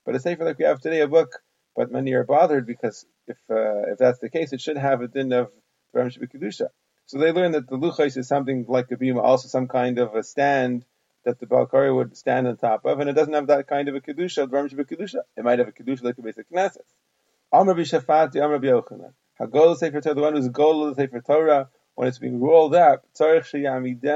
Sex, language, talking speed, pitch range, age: male, English, 230 wpm, 130-150 Hz, 30-49